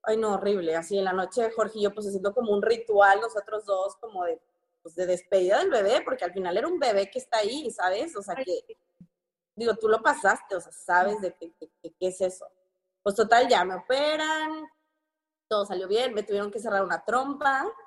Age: 20-39